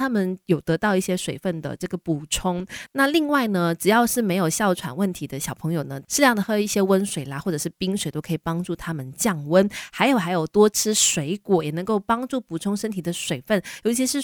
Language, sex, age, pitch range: Chinese, female, 20-39, 165-210 Hz